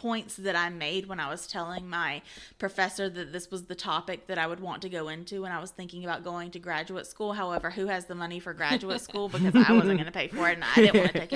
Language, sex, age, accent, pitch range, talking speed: English, female, 20-39, American, 180-220 Hz, 280 wpm